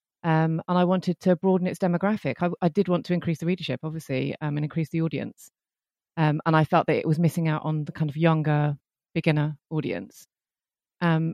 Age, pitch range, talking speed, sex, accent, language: 30-49, 150-175 Hz, 205 wpm, female, British, English